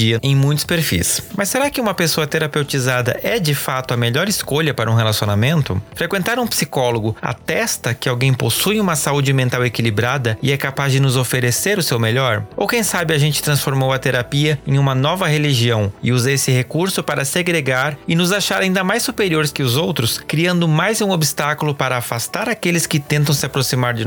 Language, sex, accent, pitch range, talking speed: Portuguese, male, Brazilian, 125-170 Hz, 190 wpm